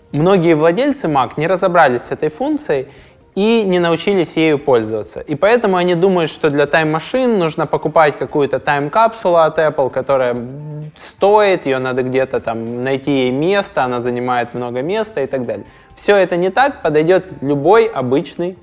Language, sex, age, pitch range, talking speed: Russian, male, 20-39, 125-175 Hz, 155 wpm